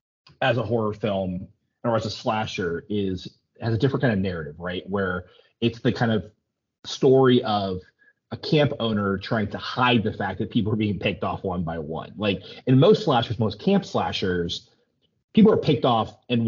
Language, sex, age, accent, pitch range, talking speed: English, male, 30-49, American, 100-130 Hz, 190 wpm